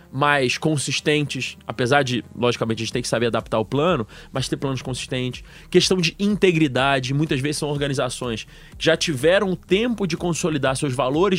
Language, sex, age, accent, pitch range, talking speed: Portuguese, male, 20-39, Brazilian, 115-155 Hz, 175 wpm